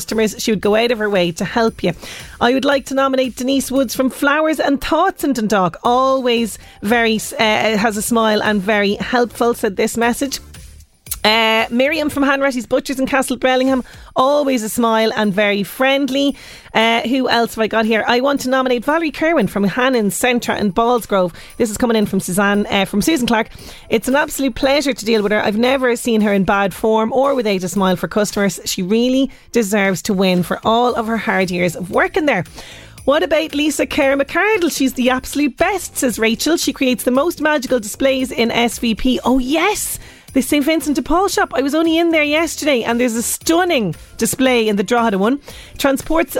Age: 30-49